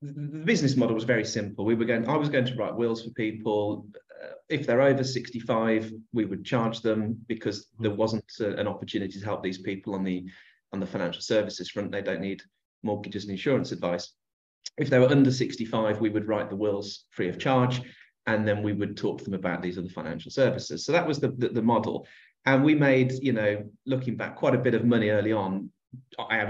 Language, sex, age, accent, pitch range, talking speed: English, male, 30-49, British, 100-125 Hz, 215 wpm